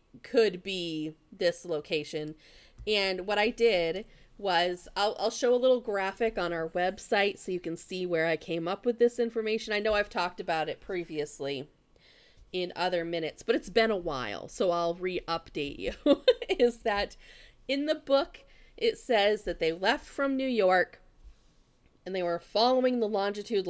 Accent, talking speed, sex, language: American, 170 wpm, female, English